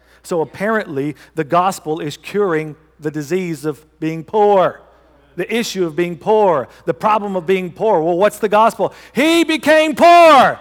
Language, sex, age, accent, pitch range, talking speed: English, male, 50-69, American, 135-220 Hz, 160 wpm